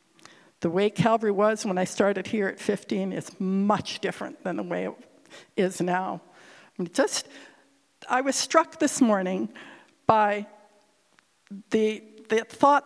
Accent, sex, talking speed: American, female, 140 wpm